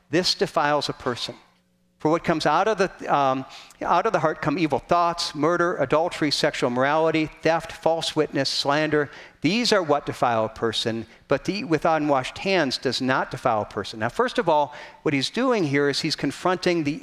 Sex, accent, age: male, American, 50-69